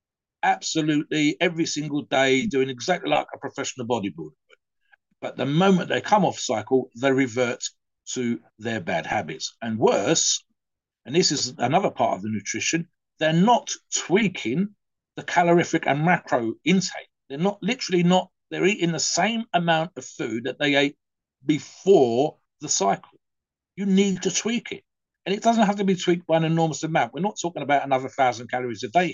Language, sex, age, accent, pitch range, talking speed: English, male, 50-69, British, 120-175 Hz, 170 wpm